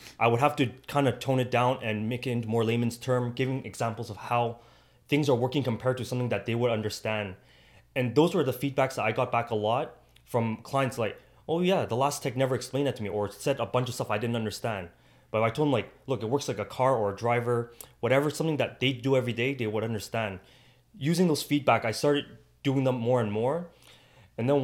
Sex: male